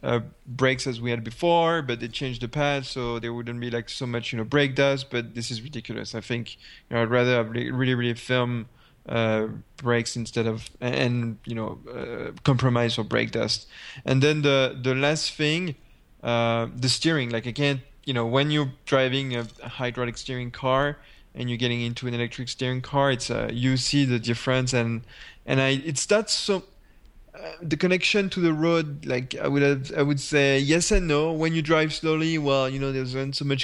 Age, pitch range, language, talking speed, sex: 20-39, 120-145 Hz, English, 205 wpm, male